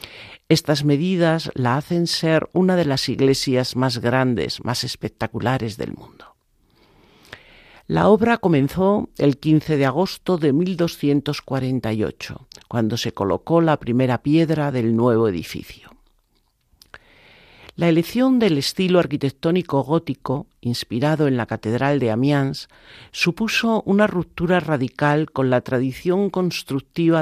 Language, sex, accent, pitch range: Spanish, male, Spanish, 125-165 Hz